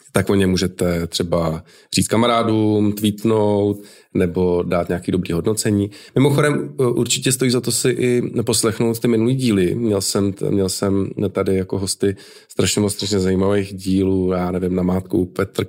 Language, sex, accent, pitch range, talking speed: Czech, male, native, 95-115 Hz, 155 wpm